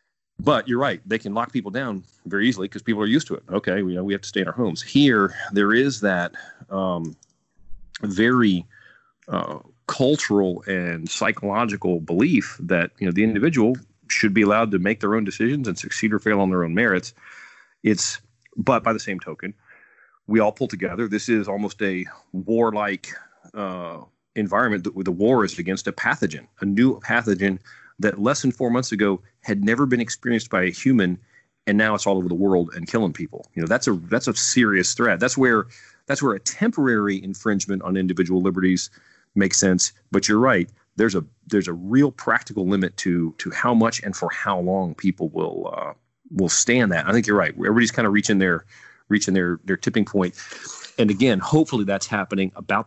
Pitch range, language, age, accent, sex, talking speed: 95-110 Hz, English, 40-59, American, male, 195 wpm